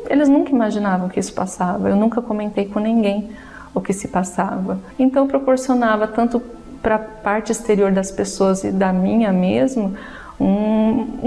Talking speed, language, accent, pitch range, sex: 160 wpm, Portuguese, Brazilian, 190-235 Hz, female